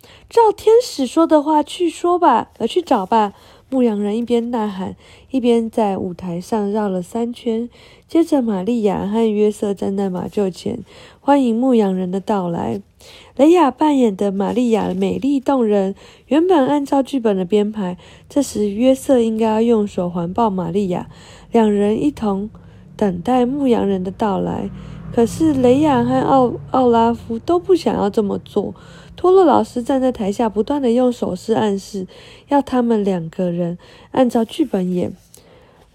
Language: Chinese